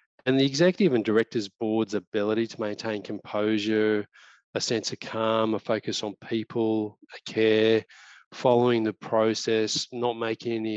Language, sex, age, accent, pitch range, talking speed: English, male, 20-39, Australian, 105-115 Hz, 140 wpm